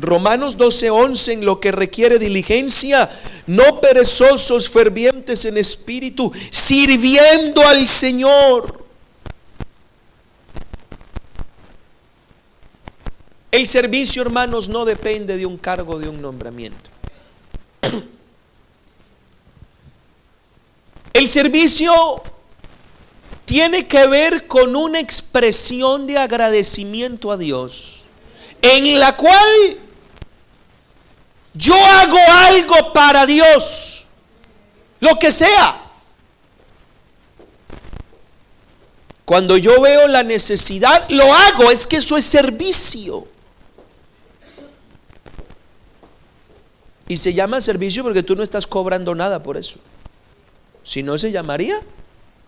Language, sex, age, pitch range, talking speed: Spanish, male, 50-69, 200-295 Hz, 90 wpm